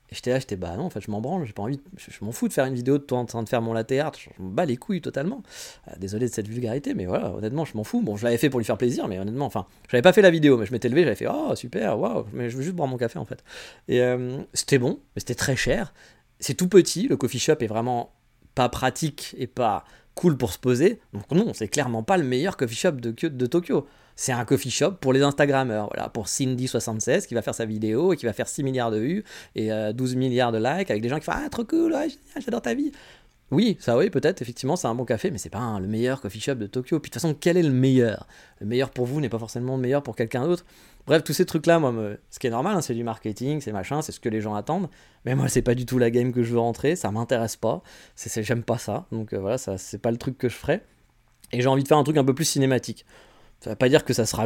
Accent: French